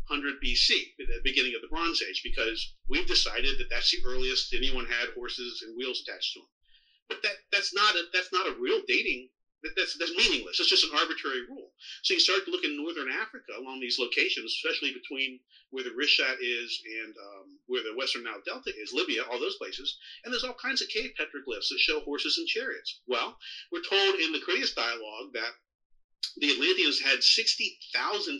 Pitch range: 270-390 Hz